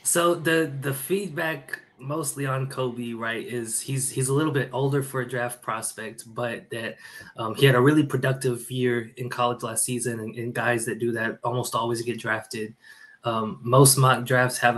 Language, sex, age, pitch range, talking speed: English, male, 20-39, 120-135 Hz, 190 wpm